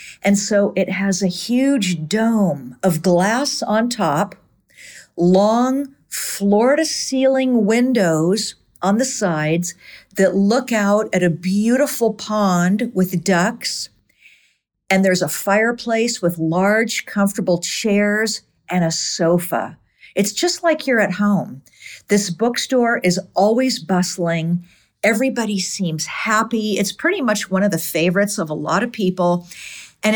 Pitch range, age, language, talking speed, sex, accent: 170-220 Hz, 50-69, English, 130 wpm, female, American